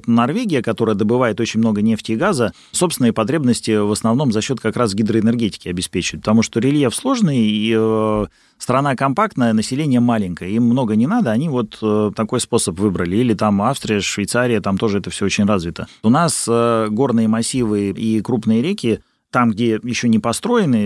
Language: Russian